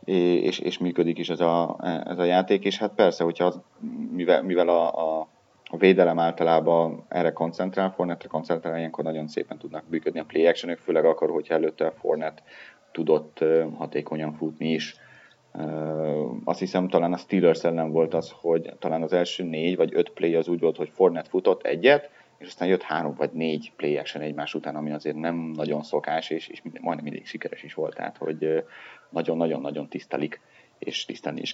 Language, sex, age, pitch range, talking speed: Hungarian, male, 30-49, 75-90 Hz, 185 wpm